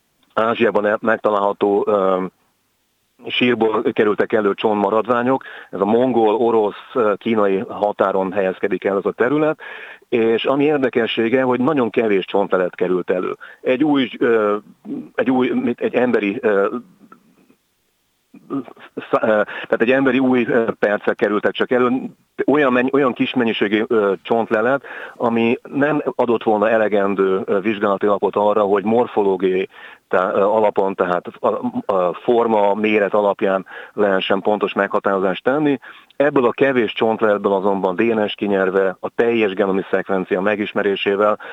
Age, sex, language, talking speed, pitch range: 40-59, male, Hungarian, 120 wpm, 100-125 Hz